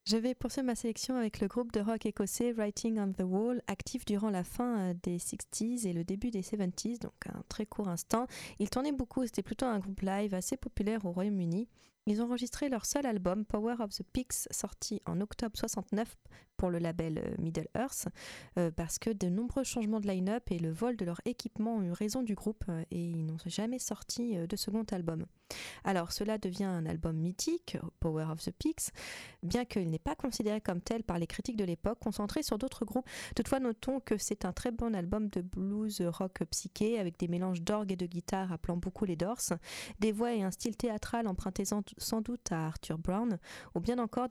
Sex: female